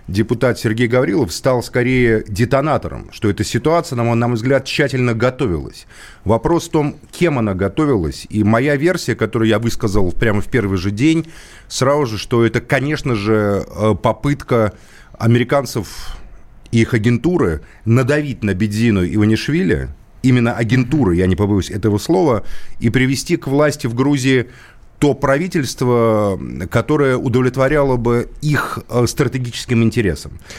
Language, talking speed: Russian, 135 wpm